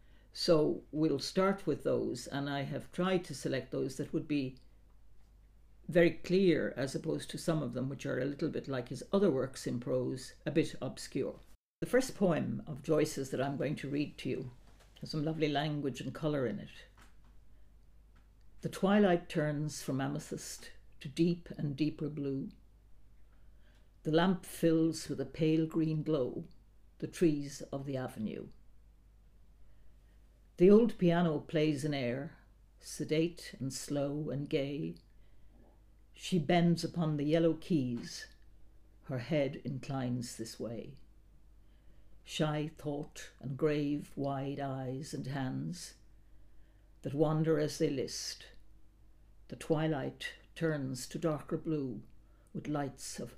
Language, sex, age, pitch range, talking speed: English, female, 60-79, 105-155 Hz, 140 wpm